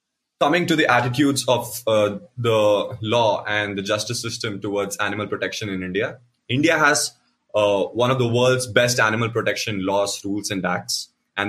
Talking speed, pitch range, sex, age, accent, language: 165 wpm, 105-125 Hz, male, 20-39, Indian, English